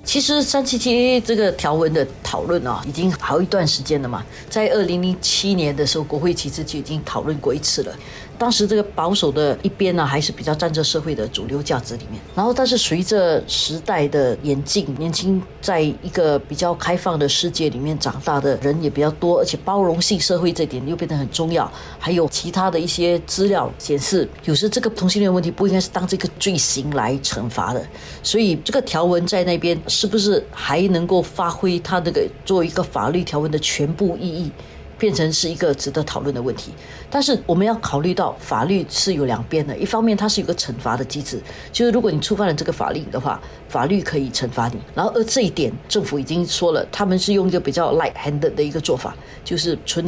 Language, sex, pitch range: Chinese, female, 145-195 Hz